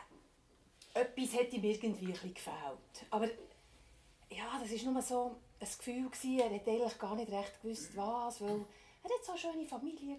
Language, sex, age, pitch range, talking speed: German, female, 30-49, 210-285 Hz, 175 wpm